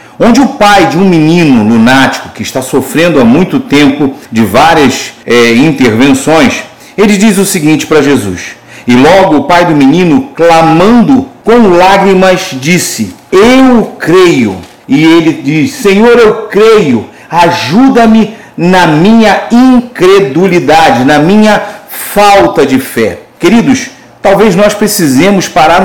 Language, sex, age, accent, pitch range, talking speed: Portuguese, male, 50-69, Brazilian, 165-230 Hz, 125 wpm